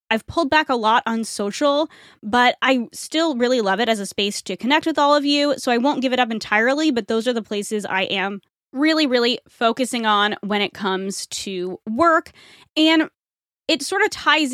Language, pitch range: English, 210-280 Hz